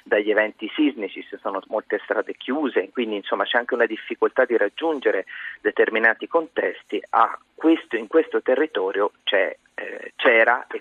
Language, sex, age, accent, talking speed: Italian, male, 40-59, native, 150 wpm